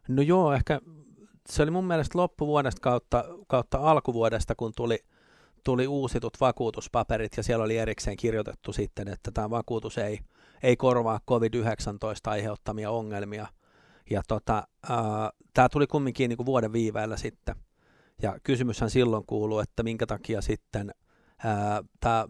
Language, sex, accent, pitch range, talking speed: Finnish, male, native, 105-125 Hz, 140 wpm